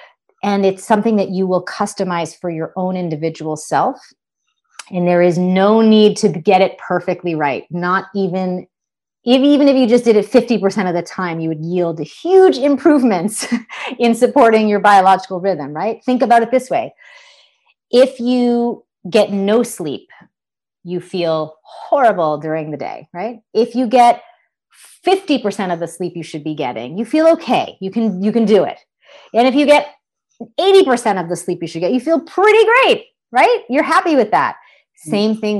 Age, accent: 30-49, American